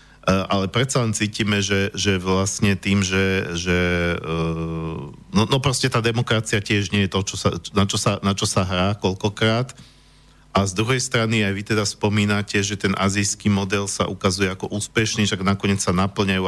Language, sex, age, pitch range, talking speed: Slovak, male, 40-59, 95-105 Hz, 180 wpm